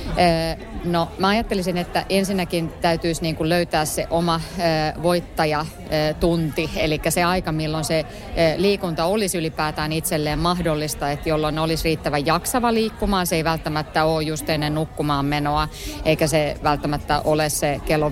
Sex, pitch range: female, 150-175 Hz